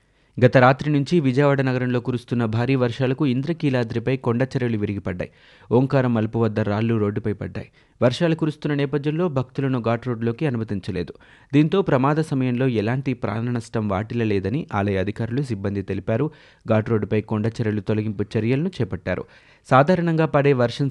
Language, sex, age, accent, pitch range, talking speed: Telugu, male, 30-49, native, 110-135 Hz, 125 wpm